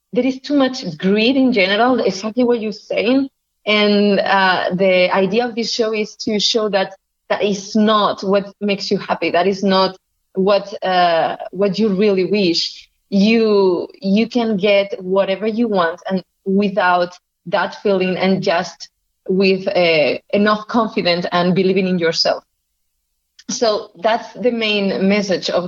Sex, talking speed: female, 150 wpm